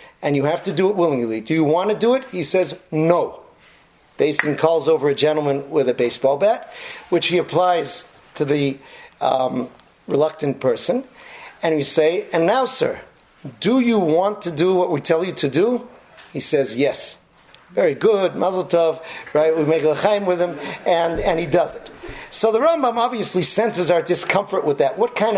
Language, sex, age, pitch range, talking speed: English, male, 40-59, 160-230 Hz, 185 wpm